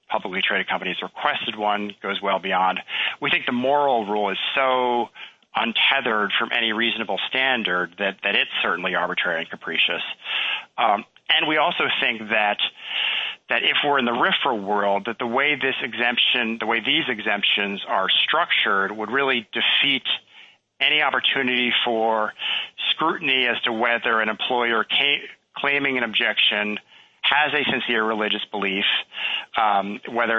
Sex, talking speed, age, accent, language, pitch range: male, 145 wpm, 40-59, American, English, 105-130 Hz